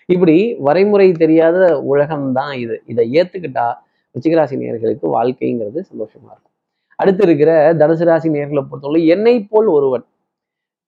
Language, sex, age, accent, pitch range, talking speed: Tamil, male, 30-49, native, 130-175 Hz, 115 wpm